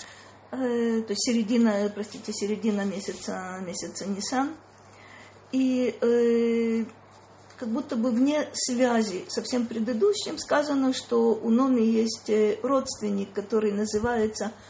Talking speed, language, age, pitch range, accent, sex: 105 wpm, Russian, 40-59, 205-250 Hz, native, female